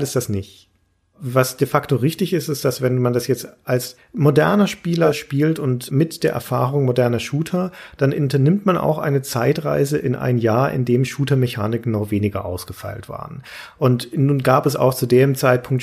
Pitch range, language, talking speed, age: 120-145 Hz, German, 180 wpm, 40-59